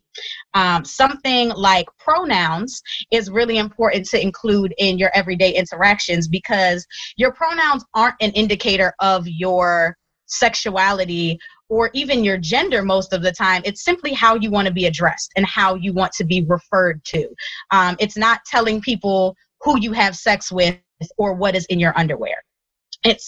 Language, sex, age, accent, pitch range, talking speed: English, female, 20-39, American, 185-230 Hz, 160 wpm